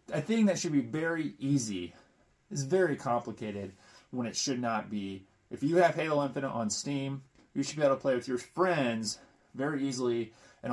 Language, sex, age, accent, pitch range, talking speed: English, male, 30-49, American, 105-140 Hz, 190 wpm